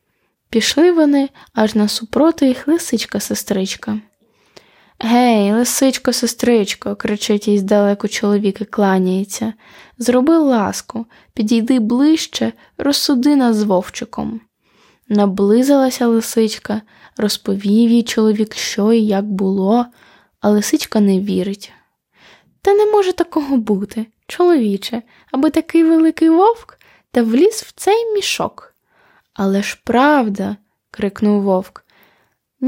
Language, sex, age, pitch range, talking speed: Ukrainian, female, 10-29, 205-270 Hz, 105 wpm